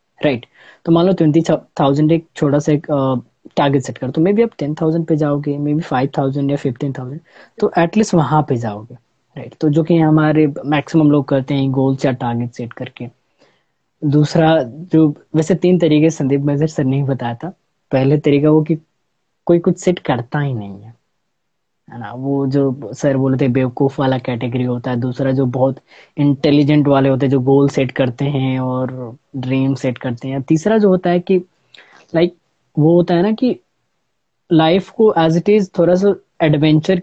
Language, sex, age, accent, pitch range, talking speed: English, female, 20-39, Indian, 135-160 Hz, 120 wpm